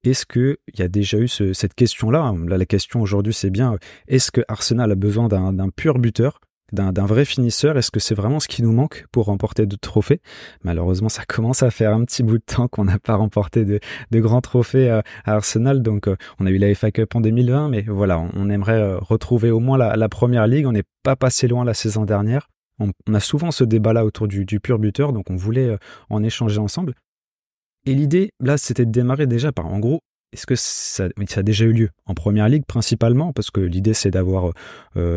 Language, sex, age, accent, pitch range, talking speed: French, male, 20-39, French, 100-125 Hz, 230 wpm